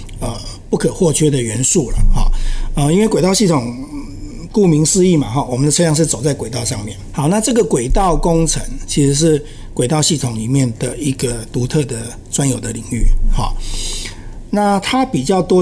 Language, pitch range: Chinese, 115-150 Hz